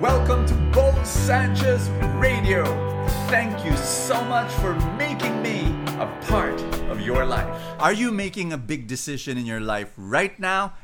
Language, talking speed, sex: English, 155 wpm, male